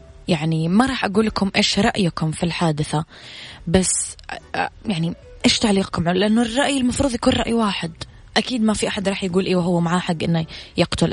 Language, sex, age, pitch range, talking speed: Arabic, female, 20-39, 165-215 Hz, 165 wpm